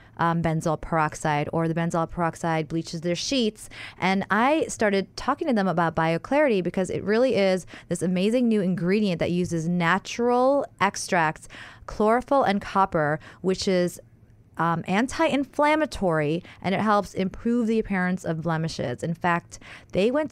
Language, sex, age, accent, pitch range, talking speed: English, female, 20-39, American, 165-210 Hz, 145 wpm